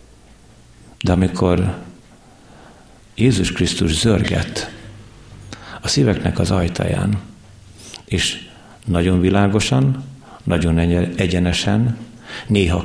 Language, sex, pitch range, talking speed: Hungarian, male, 85-115 Hz, 70 wpm